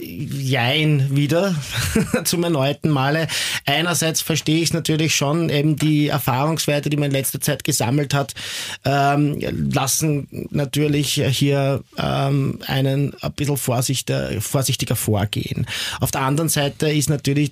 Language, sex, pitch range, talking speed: German, male, 120-145 Hz, 125 wpm